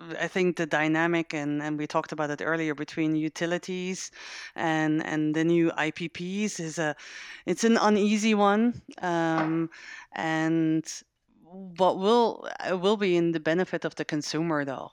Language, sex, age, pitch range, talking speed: English, female, 30-49, 150-180 Hz, 150 wpm